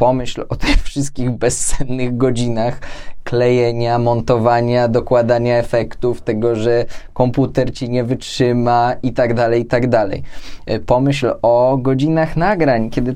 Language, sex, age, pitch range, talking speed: Polish, male, 20-39, 120-135 Hz, 125 wpm